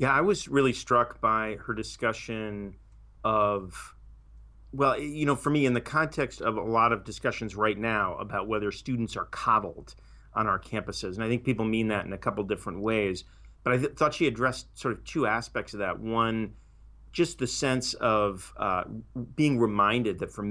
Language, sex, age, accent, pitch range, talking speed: English, male, 40-59, American, 95-115 Hz, 185 wpm